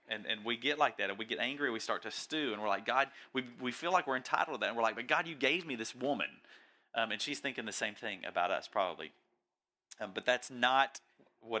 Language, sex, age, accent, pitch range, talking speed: English, male, 30-49, American, 115-150 Hz, 270 wpm